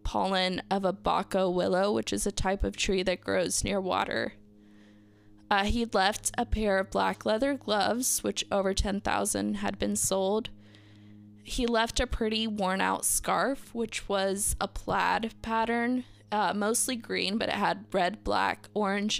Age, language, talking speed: 10-29, English, 155 wpm